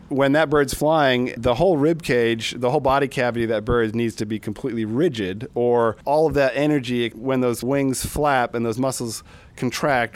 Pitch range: 110-130 Hz